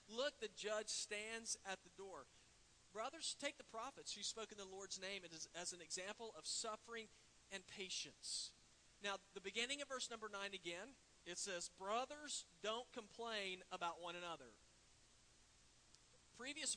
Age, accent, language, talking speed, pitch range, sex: 40-59, American, English, 145 wpm, 175-220 Hz, male